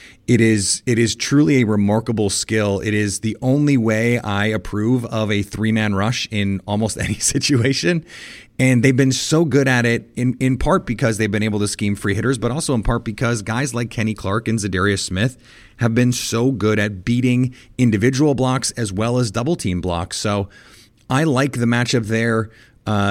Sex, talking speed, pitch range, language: male, 190 wpm, 100-125 Hz, English